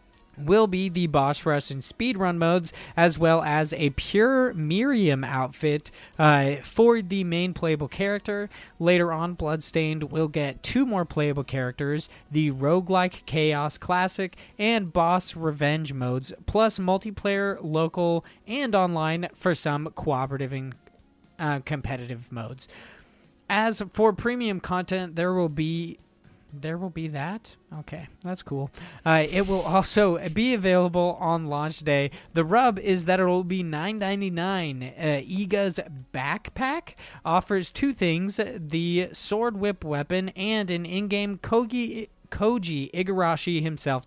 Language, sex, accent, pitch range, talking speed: English, male, American, 150-195 Hz, 130 wpm